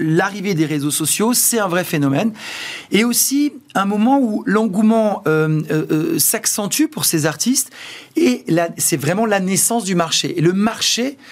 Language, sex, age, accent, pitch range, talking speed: French, male, 40-59, French, 150-210 Hz, 170 wpm